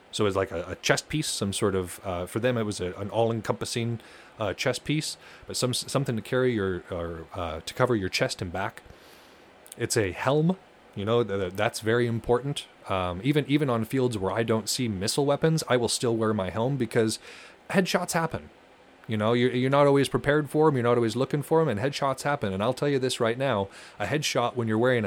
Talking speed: 225 wpm